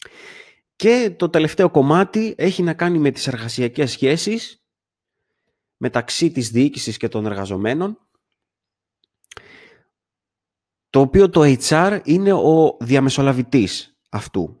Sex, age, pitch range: male, 30-49, 110-175 Hz